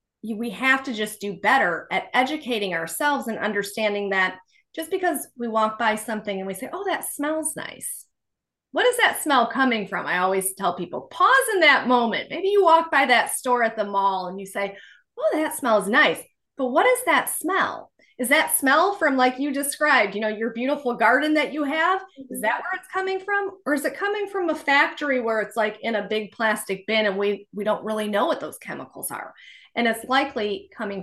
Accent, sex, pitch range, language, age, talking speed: American, female, 195-285 Hz, English, 30-49, 215 wpm